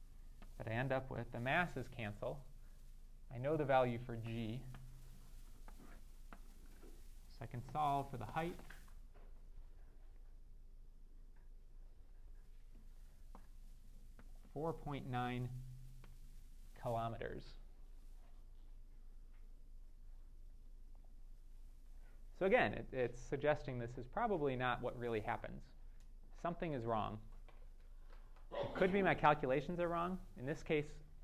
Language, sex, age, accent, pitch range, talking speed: English, male, 30-49, American, 80-130 Hz, 90 wpm